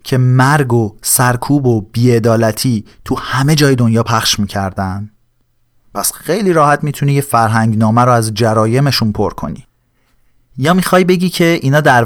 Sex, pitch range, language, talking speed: male, 110-135 Hz, Persian, 150 wpm